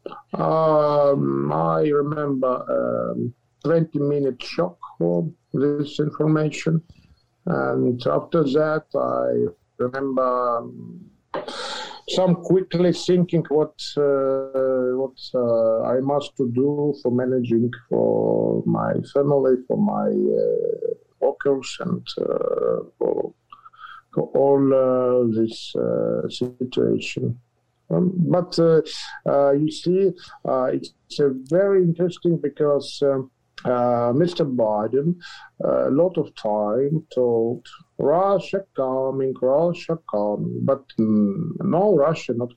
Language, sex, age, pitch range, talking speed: English, male, 50-69, 125-170 Hz, 105 wpm